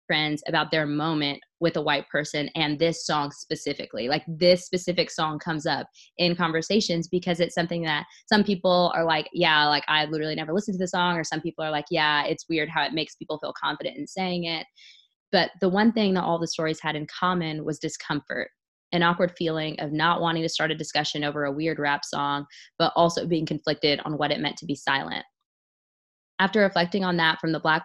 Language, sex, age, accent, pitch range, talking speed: English, female, 20-39, American, 150-175 Hz, 215 wpm